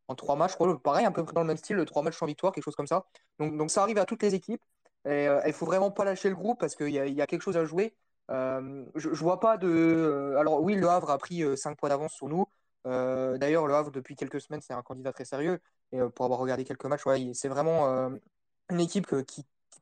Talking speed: 285 wpm